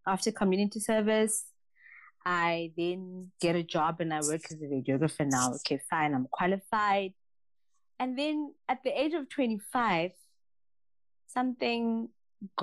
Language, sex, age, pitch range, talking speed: English, female, 20-39, 165-220 Hz, 130 wpm